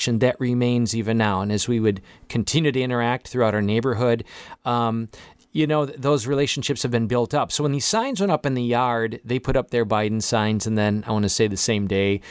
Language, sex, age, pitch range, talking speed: English, male, 40-59, 115-140 Hz, 230 wpm